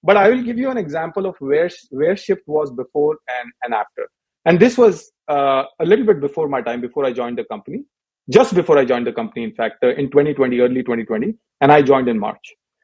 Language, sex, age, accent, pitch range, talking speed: English, male, 30-49, Indian, 140-215 Hz, 230 wpm